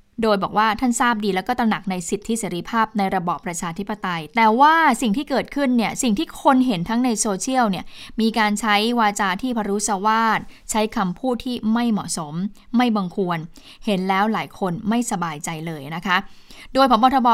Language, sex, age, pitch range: Thai, female, 10-29, 195-235 Hz